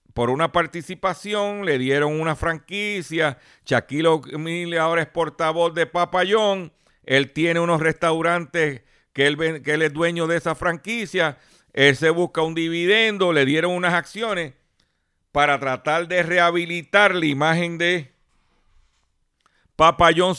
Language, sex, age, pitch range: Spanish, male, 50-69, 135-175 Hz